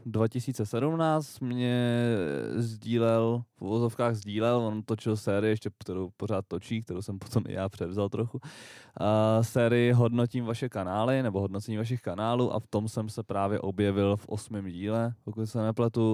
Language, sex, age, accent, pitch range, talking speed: Czech, male, 20-39, native, 95-115 Hz, 155 wpm